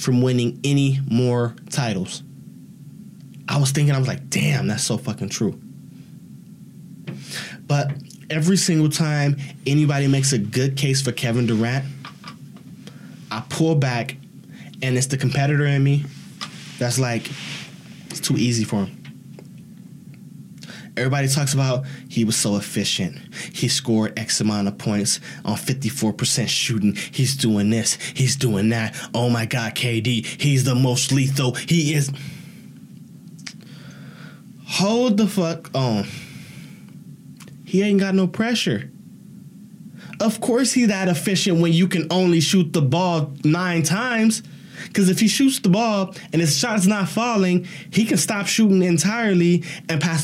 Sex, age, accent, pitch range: male, 20-39, American, 135-185 Hz